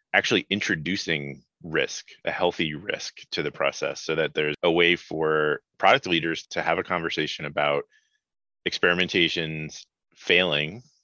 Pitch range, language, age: 75-85 Hz, English, 30-49